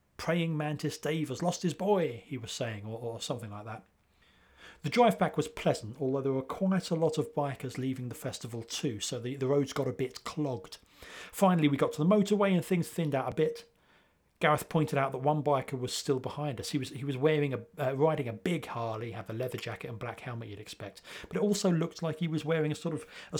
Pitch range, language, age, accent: 125-155 Hz, English, 40-59, British